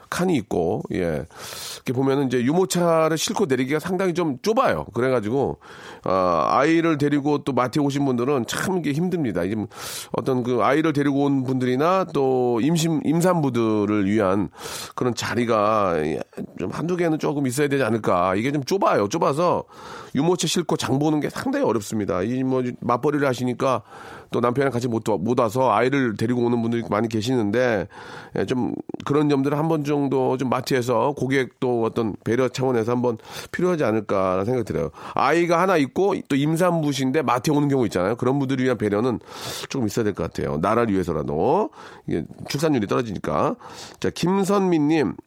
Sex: male